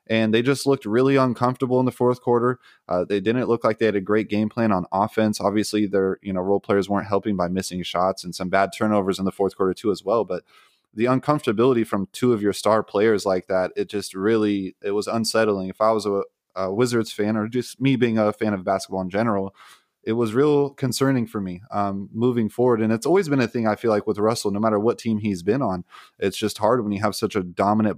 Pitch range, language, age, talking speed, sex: 95-115 Hz, English, 20-39, 245 wpm, male